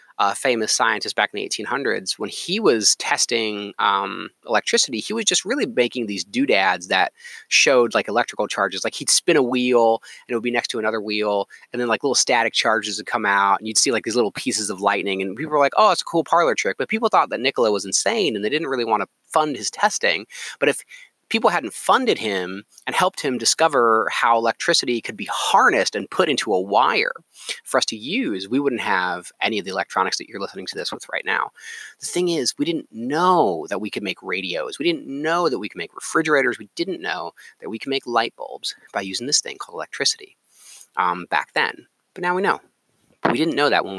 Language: English